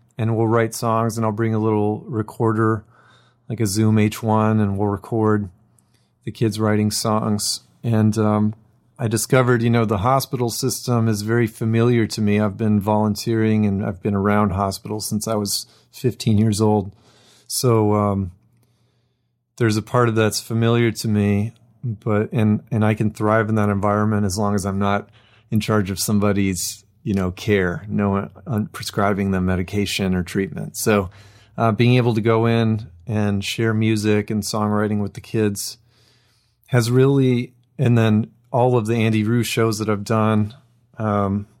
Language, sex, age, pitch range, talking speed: English, male, 30-49, 105-115 Hz, 170 wpm